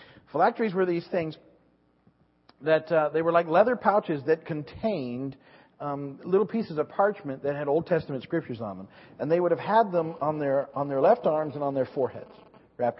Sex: male